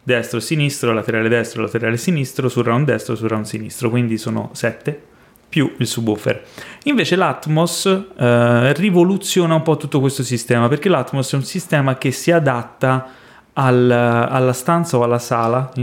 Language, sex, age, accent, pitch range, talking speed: Italian, male, 30-49, native, 115-145 Hz, 165 wpm